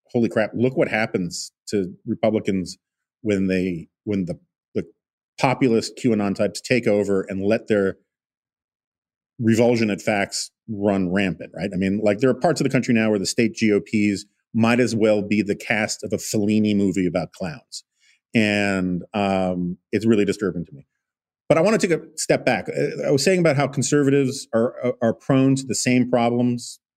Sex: male